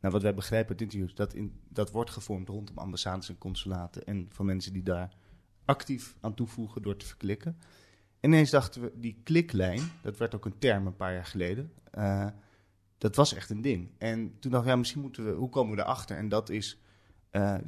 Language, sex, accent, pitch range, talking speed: Dutch, male, Dutch, 100-120 Hz, 215 wpm